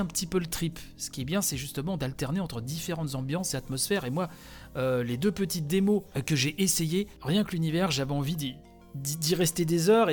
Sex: male